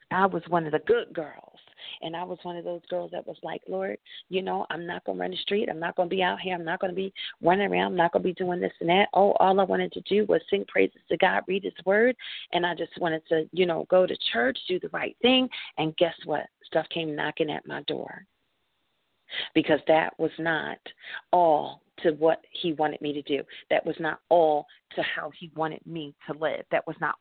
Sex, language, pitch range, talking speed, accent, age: female, English, 160-190 Hz, 250 wpm, American, 40-59